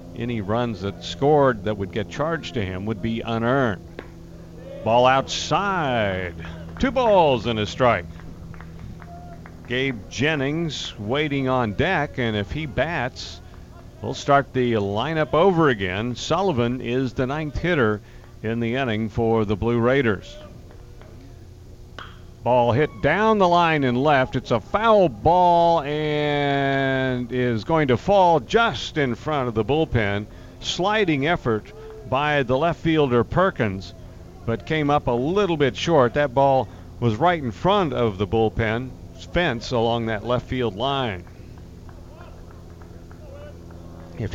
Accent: American